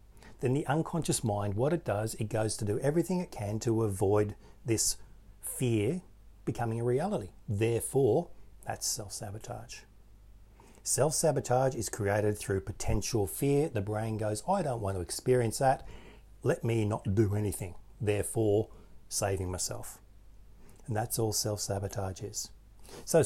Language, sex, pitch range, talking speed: English, male, 100-125 Hz, 135 wpm